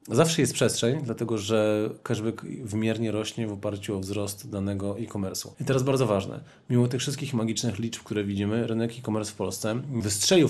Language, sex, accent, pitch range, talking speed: Polish, male, native, 105-120 Hz, 170 wpm